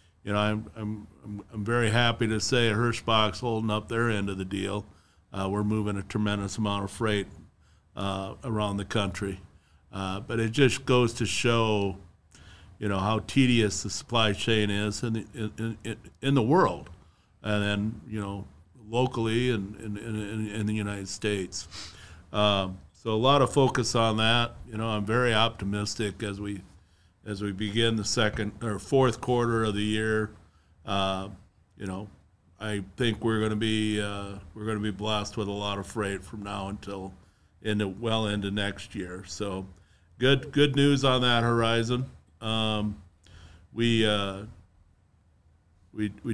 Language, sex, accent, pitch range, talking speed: English, male, American, 95-115 Hz, 165 wpm